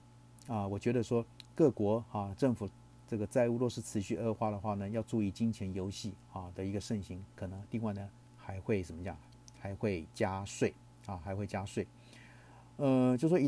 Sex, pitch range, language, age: male, 100-120 Hz, Chinese, 50-69